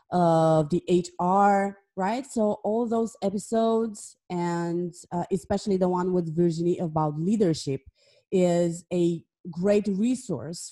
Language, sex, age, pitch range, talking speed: English, female, 30-49, 170-200 Hz, 120 wpm